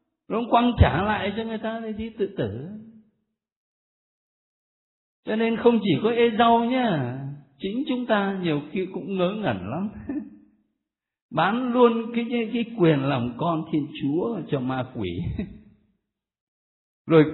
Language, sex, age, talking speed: Vietnamese, male, 60-79, 140 wpm